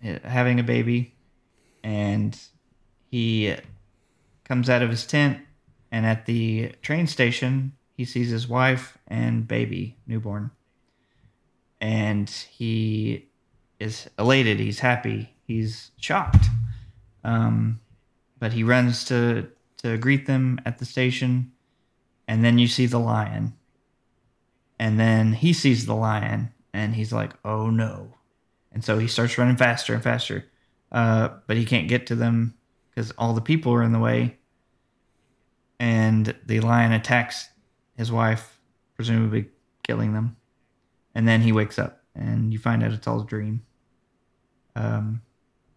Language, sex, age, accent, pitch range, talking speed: English, male, 20-39, American, 110-125 Hz, 135 wpm